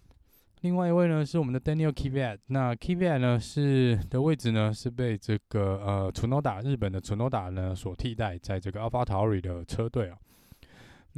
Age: 20-39